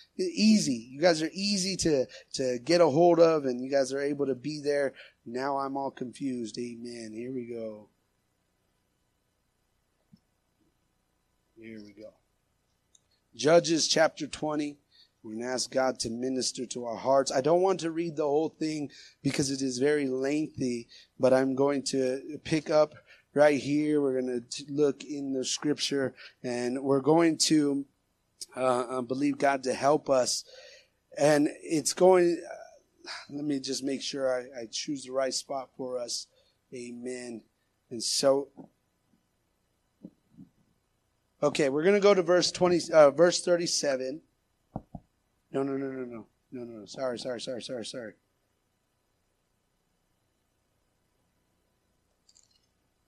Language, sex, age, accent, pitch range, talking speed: English, male, 30-49, American, 125-150 Hz, 140 wpm